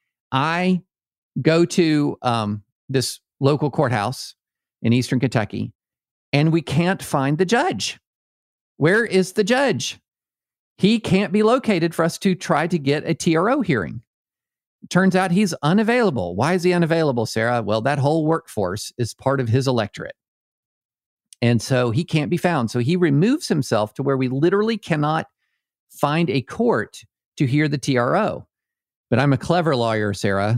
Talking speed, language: 155 wpm, English